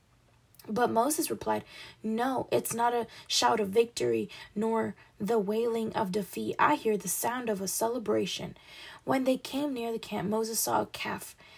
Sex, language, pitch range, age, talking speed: female, English, 200-235 Hz, 10-29, 165 wpm